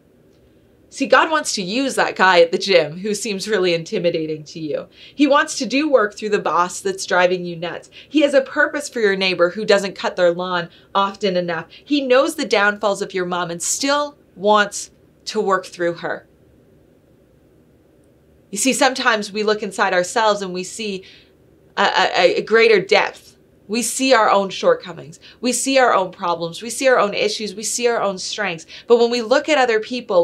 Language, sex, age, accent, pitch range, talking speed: English, female, 30-49, American, 190-270 Hz, 195 wpm